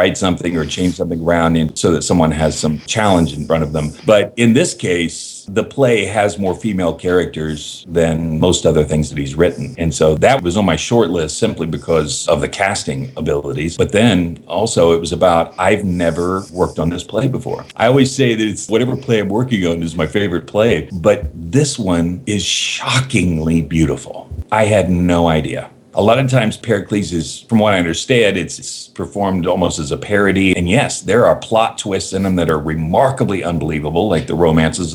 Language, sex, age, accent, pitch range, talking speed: English, male, 50-69, American, 80-105 Hz, 200 wpm